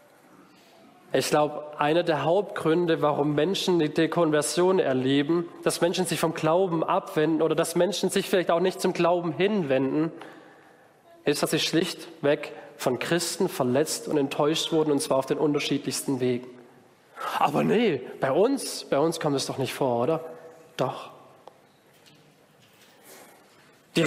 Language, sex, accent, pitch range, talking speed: German, male, German, 155-195 Hz, 140 wpm